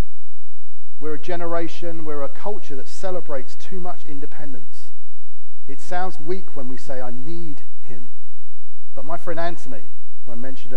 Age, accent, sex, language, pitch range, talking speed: 40-59, British, male, English, 120-160 Hz, 150 wpm